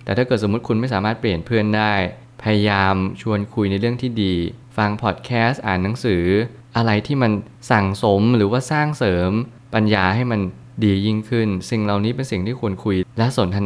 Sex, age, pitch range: male, 20-39, 100-120 Hz